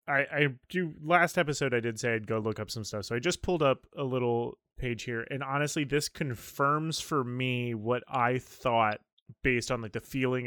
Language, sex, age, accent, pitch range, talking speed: English, male, 20-39, American, 115-140 Hz, 210 wpm